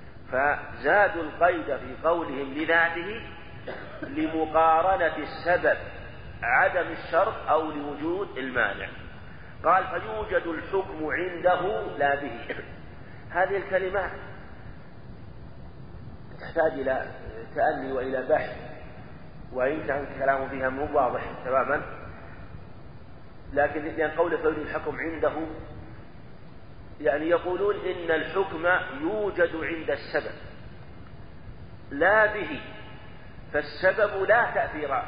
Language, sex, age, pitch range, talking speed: Arabic, male, 40-59, 140-175 Hz, 85 wpm